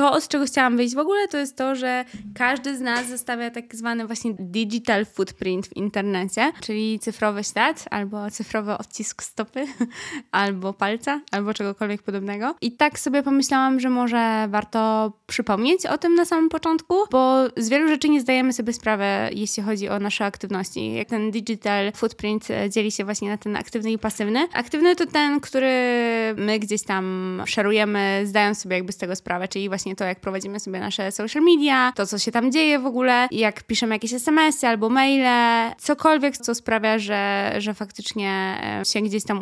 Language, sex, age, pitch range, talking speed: Polish, female, 20-39, 205-255 Hz, 180 wpm